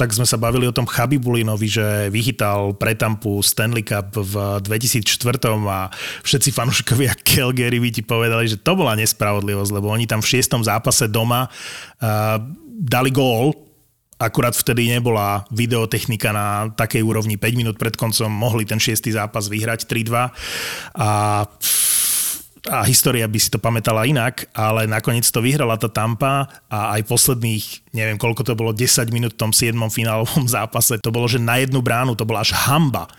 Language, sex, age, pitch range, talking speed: Slovak, male, 30-49, 110-125 Hz, 165 wpm